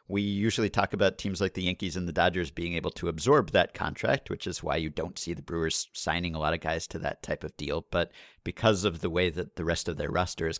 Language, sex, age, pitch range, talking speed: English, male, 50-69, 85-100 Hz, 265 wpm